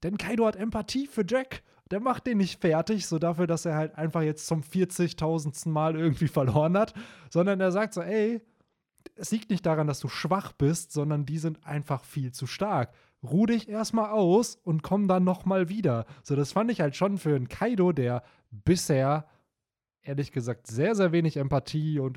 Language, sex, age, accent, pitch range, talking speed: German, male, 20-39, German, 125-175 Hz, 190 wpm